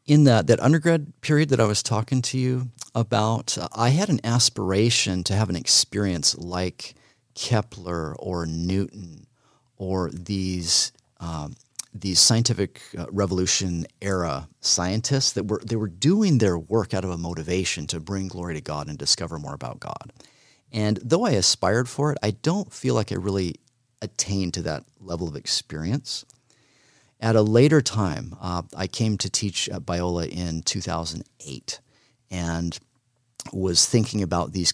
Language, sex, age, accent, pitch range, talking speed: English, male, 40-59, American, 90-120 Hz, 155 wpm